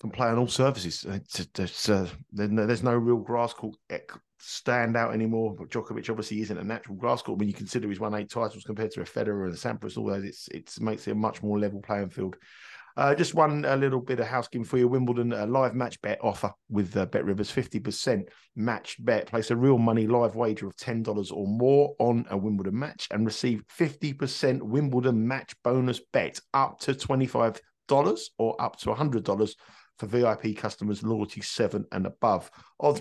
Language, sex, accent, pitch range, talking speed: English, male, British, 100-120 Hz, 195 wpm